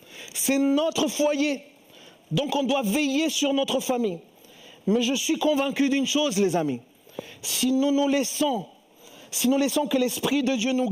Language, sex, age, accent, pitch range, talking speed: French, male, 40-59, French, 175-265 Hz, 165 wpm